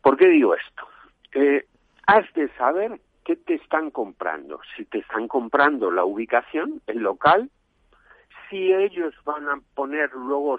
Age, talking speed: 60-79, 145 wpm